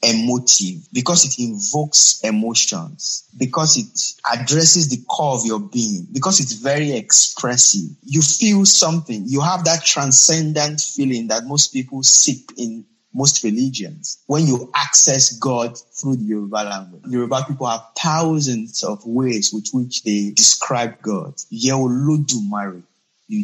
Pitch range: 115-150 Hz